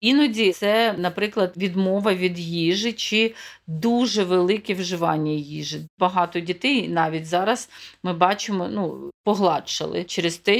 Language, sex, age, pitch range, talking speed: Ukrainian, female, 40-59, 175-225 Hz, 120 wpm